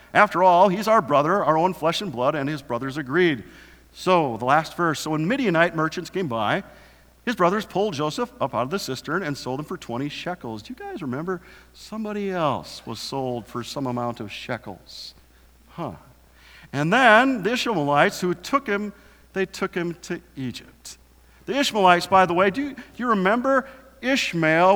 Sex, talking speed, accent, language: male, 180 wpm, American, English